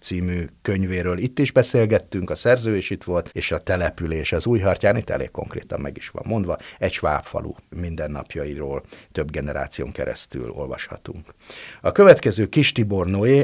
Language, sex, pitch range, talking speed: Hungarian, male, 85-110 Hz, 150 wpm